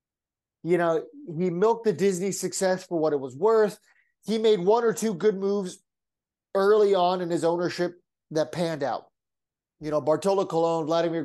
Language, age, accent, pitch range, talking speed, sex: English, 30-49, American, 155-200 Hz, 170 wpm, male